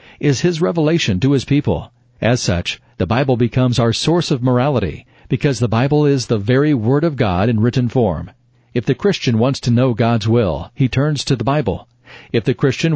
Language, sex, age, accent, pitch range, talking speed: English, male, 50-69, American, 115-135 Hz, 200 wpm